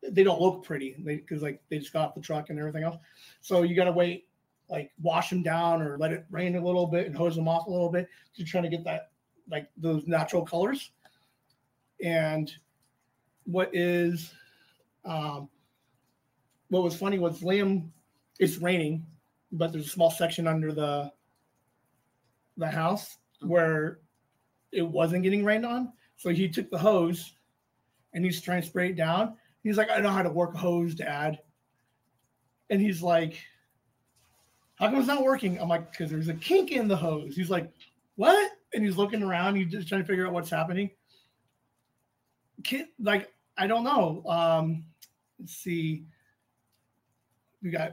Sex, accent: male, American